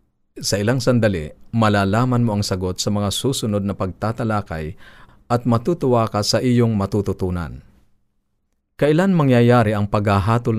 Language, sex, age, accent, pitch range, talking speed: Filipino, male, 40-59, native, 100-120 Hz, 125 wpm